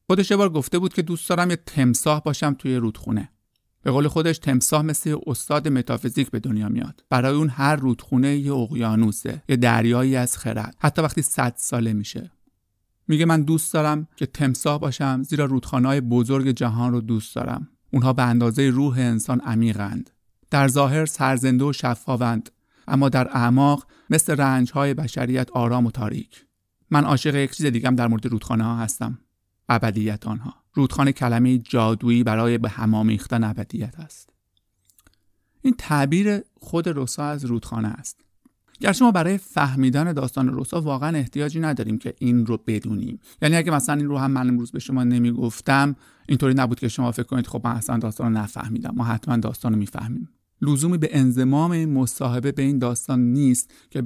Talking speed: 170 wpm